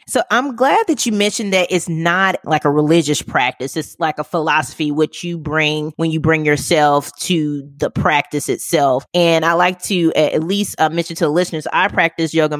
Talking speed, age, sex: 200 wpm, 20-39, female